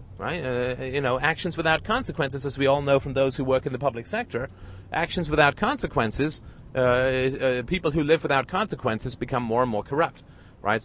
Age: 40-59